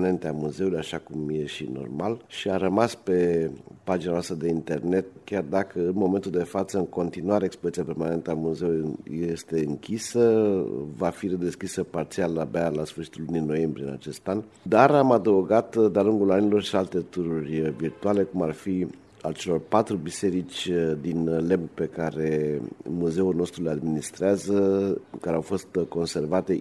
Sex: male